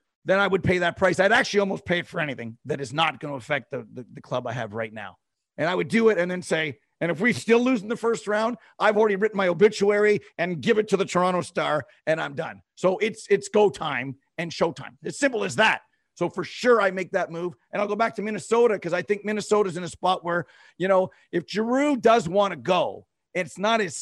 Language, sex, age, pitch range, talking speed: English, male, 50-69, 175-225 Hz, 255 wpm